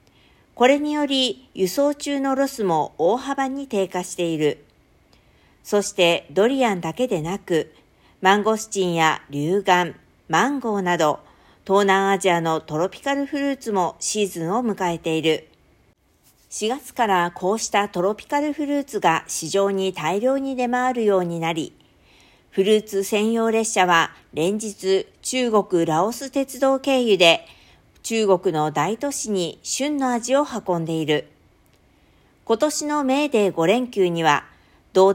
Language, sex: Japanese, female